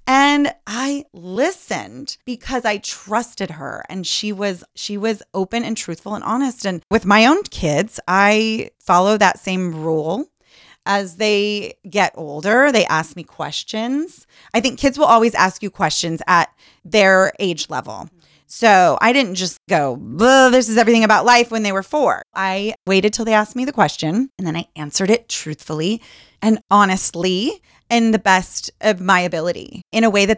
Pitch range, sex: 175-230 Hz, female